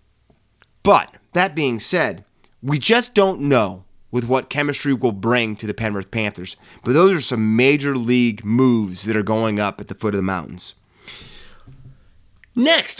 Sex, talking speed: male, 160 wpm